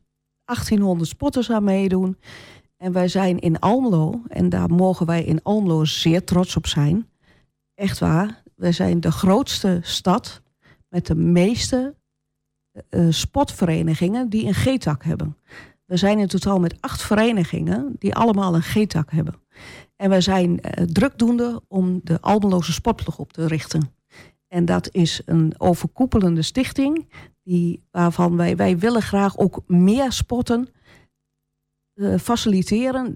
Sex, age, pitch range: female, 40-59, 170-220 Hz